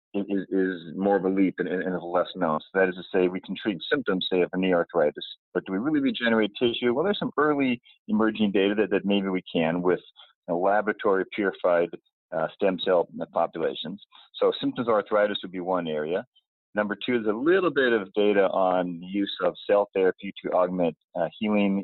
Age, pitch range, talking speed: 40-59, 90-110 Hz, 205 wpm